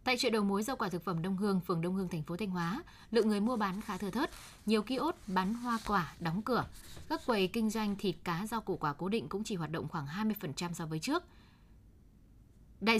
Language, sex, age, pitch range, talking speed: Vietnamese, female, 10-29, 175-225 Hz, 245 wpm